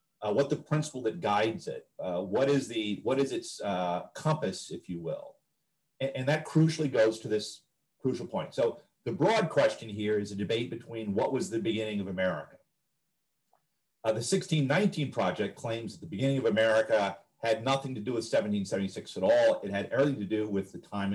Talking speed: 190 wpm